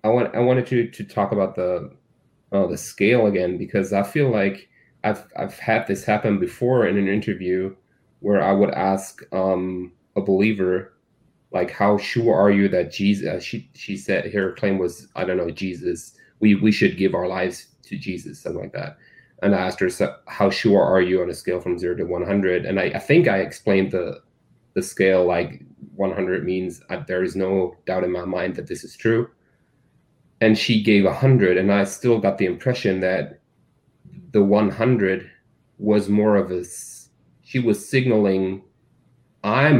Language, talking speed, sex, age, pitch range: English, 185 wpm, male, 20-39, 95-115 Hz